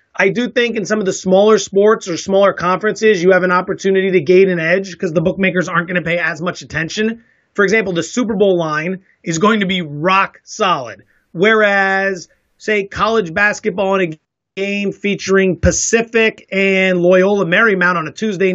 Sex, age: male, 30-49